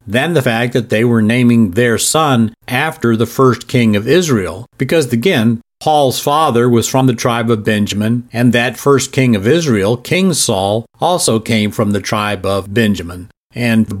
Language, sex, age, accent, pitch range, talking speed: English, male, 50-69, American, 115-140 Hz, 180 wpm